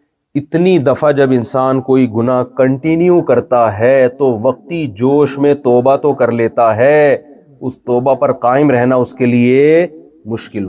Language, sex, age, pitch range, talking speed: Urdu, male, 40-59, 120-170 Hz, 150 wpm